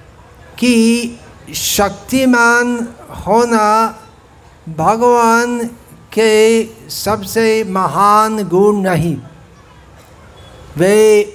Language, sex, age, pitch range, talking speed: Hindi, male, 50-69, 145-220 Hz, 55 wpm